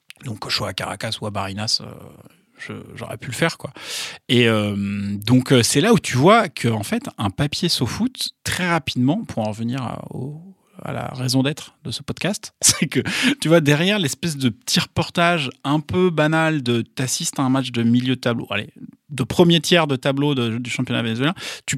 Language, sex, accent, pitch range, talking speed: French, male, French, 115-145 Hz, 210 wpm